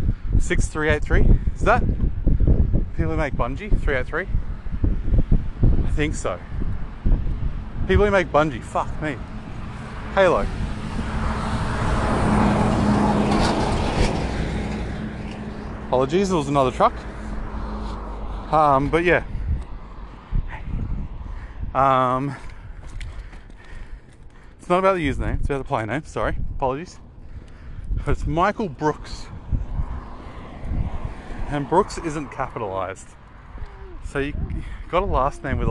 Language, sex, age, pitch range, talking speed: English, male, 20-39, 85-130 Hz, 100 wpm